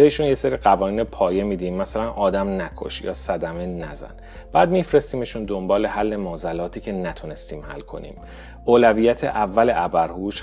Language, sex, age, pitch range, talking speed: Persian, male, 30-49, 85-115 Hz, 140 wpm